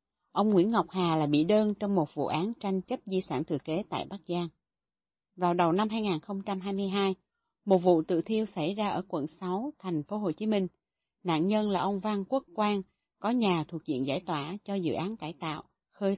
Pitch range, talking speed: 165-205 Hz, 210 wpm